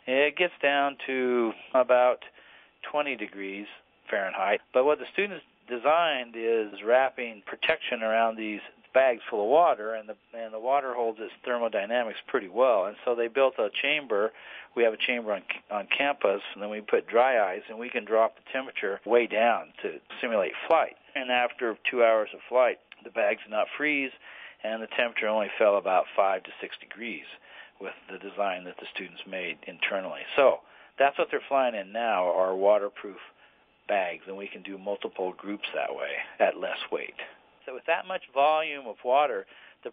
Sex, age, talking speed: male, 40-59, 180 wpm